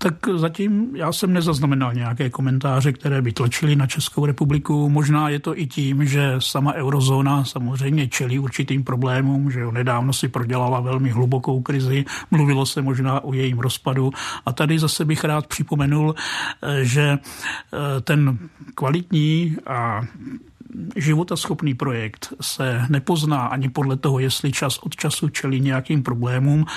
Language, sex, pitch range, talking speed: Czech, male, 130-150 Hz, 140 wpm